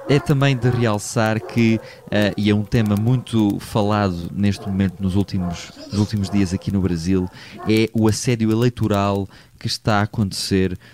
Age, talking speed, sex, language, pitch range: 20-39, 155 wpm, male, Portuguese, 100-115 Hz